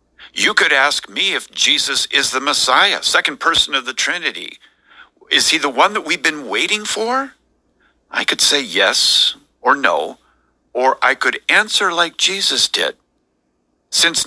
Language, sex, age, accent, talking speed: English, male, 50-69, American, 155 wpm